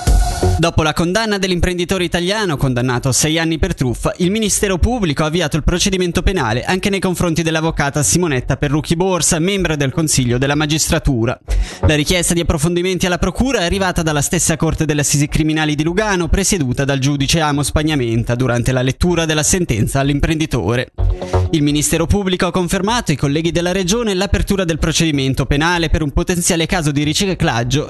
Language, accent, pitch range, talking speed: Italian, native, 140-185 Hz, 165 wpm